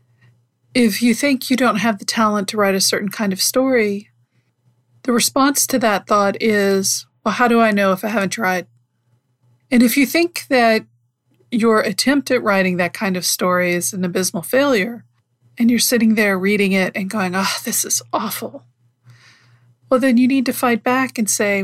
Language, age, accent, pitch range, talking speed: English, 40-59, American, 170-230 Hz, 190 wpm